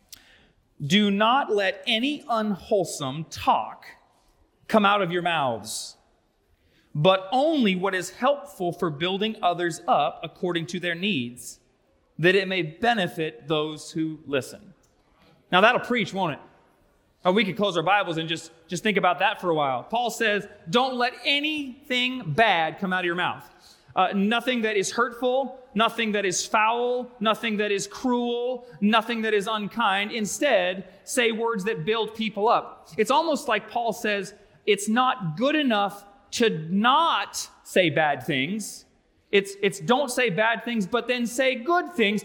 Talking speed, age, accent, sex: 155 wpm, 30-49, American, male